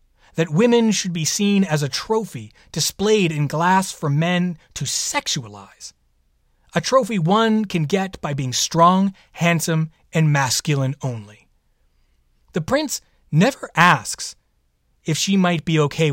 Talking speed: 135 wpm